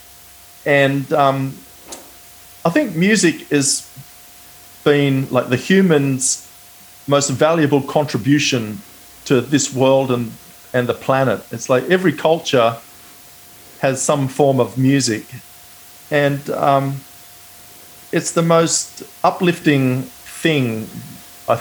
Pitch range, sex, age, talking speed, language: 125-150 Hz, male, 40-59, 105 wpm, English